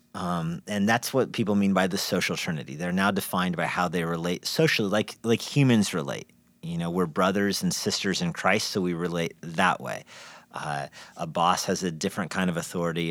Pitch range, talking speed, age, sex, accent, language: 90-120 Hz, 200 wpm, 40-59, male, American, English